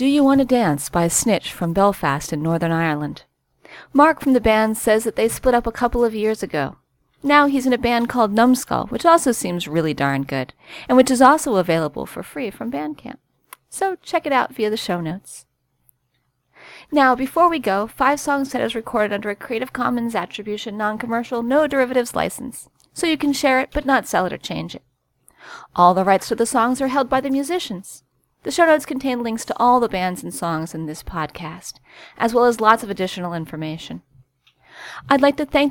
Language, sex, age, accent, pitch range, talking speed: English, female, 40-59, American, 185-265 Hz, 205 wpm